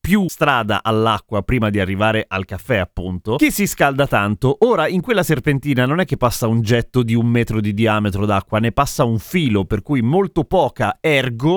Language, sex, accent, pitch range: Italian, male, native, 115-175 Hz